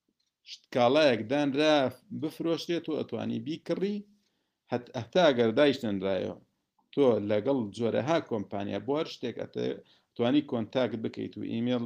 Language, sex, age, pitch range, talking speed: English, male, 50-69, 110-150 Hz, 120 wpm